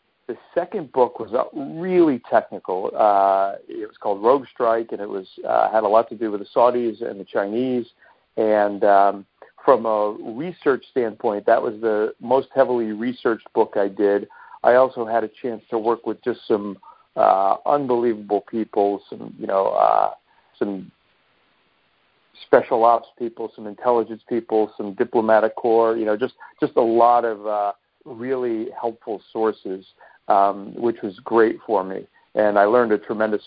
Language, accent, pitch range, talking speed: English, American, 105-125 Hz, 165 wpm